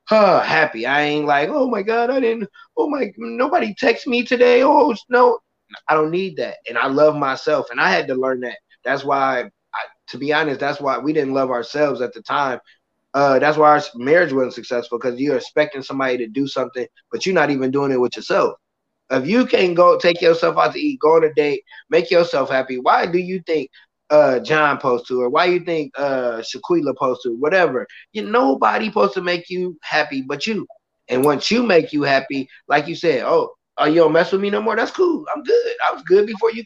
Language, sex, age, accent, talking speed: English, male, 20-39, American, 225 wpm